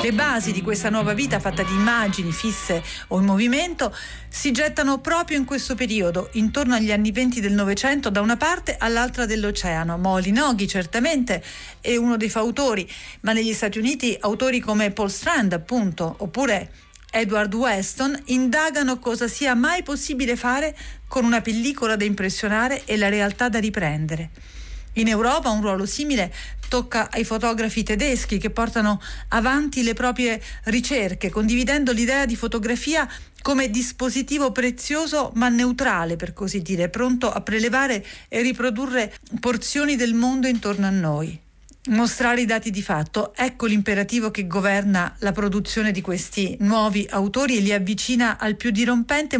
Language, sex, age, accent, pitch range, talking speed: Italian, female, 40-59, native, 200-250 Hz, 150 wpm